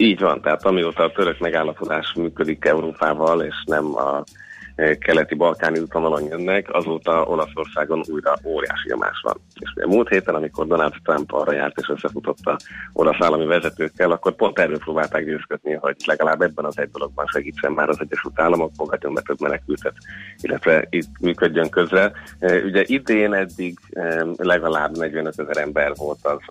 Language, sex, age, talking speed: Hungarian, male, 30-49, 155 wpm